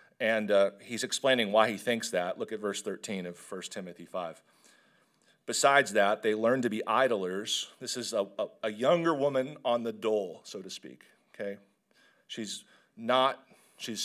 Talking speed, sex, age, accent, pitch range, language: 170 wpm, male, 40-59, American, 110-130 Hz, English